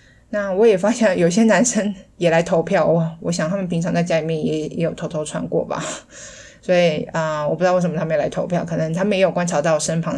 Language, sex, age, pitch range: Chinese, female, 20-39, 160-190 Hz